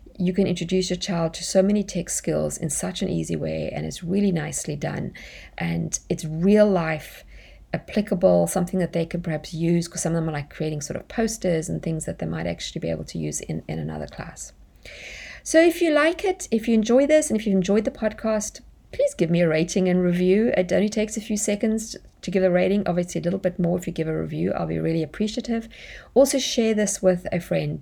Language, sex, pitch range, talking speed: English, female, 160-200 Hz, 235 wpm